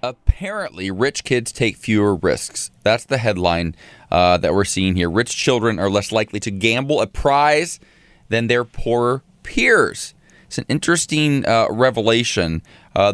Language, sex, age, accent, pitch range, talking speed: English, male, 20-39, American, 100-125 Hz, 150 wpm